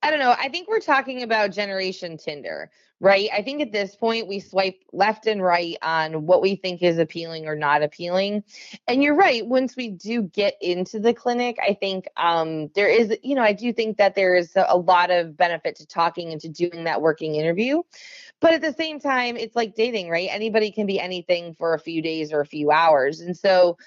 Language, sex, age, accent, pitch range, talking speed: English, female, 20-39, American, 175-230 Hz, 220 wpm